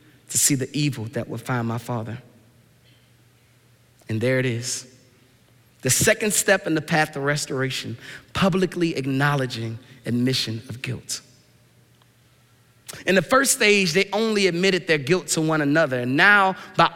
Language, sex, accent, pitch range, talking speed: English, male, American, 130-185 Hz, 145 wpm